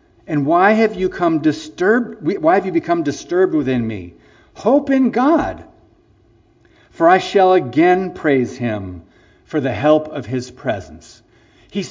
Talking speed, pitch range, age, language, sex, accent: 145 wpm, 145-235 Hz, 50-69, English, male, American